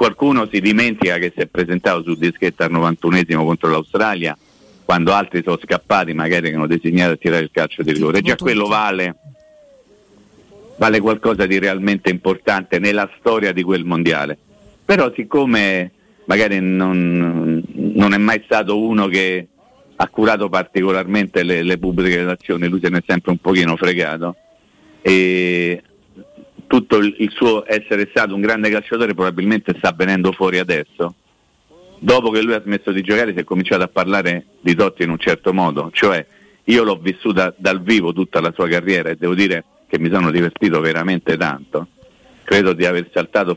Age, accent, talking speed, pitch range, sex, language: 50-69, native, 165 wpm, 85-100 Hz, male, Italian